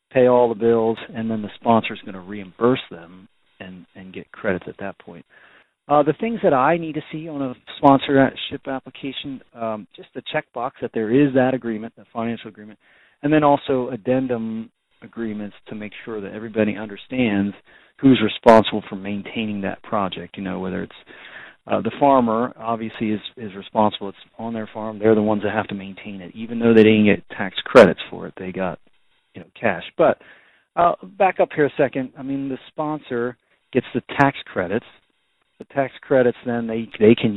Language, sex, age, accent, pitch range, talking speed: English, male, 40-59, American, 105-125 Hz, 190 wpm